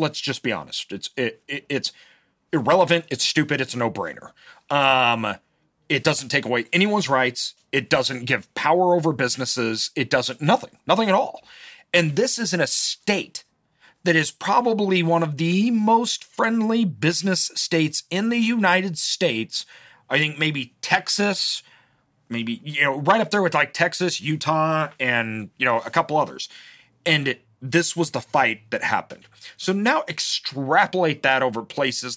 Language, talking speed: English, 165 wpm